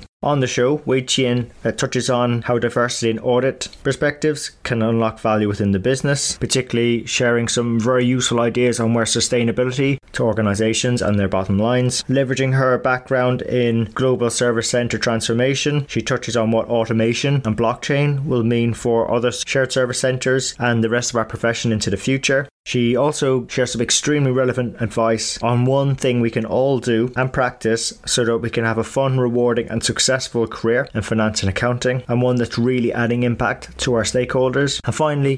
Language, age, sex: English, 20-39, male